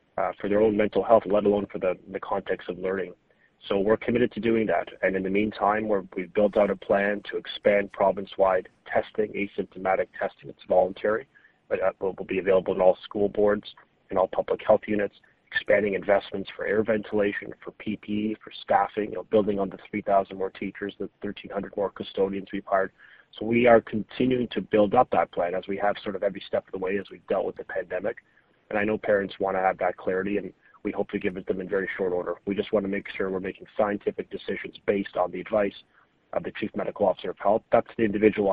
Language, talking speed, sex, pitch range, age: English, 225 wpm, male, 95-110 Hz, 30-49